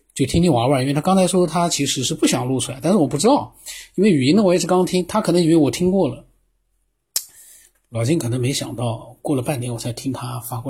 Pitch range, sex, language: 120-150 Hz, male, Chinese